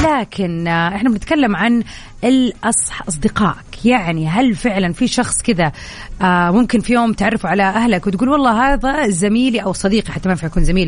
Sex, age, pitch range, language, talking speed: female, 30-49, 190-245 Hz, Arabic, 165 wpm